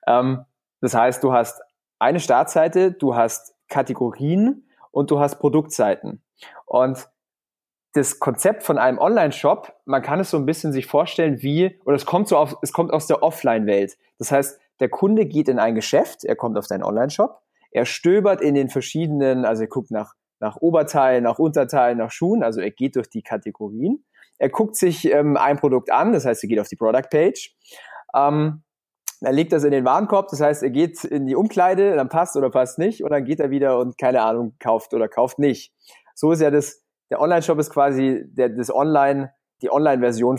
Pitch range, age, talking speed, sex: 125-165 Hz, 30-49, 195 wpm, male